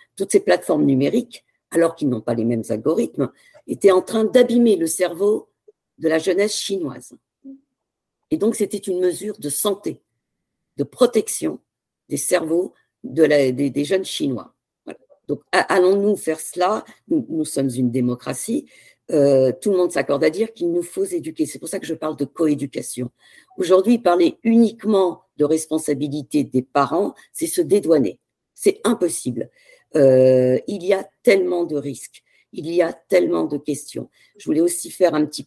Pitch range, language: 145-215 Hz, French